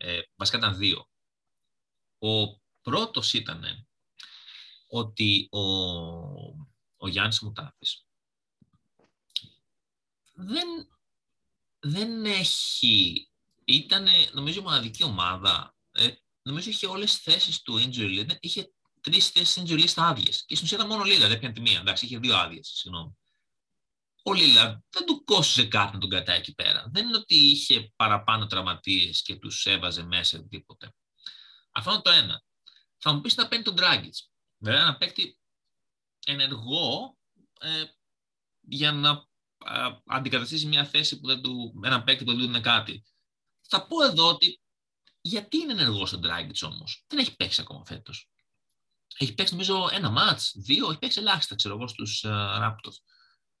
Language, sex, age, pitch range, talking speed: Greek, male, 30-49, 105-175 Hz, 145 wpm